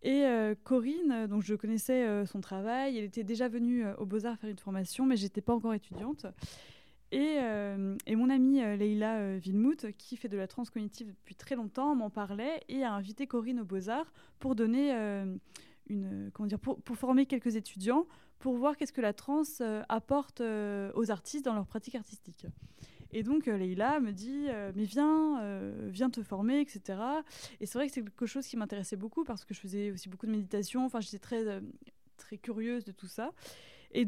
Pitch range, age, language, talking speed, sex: 205-250 Hz, 20-39, French, 190 wpm, female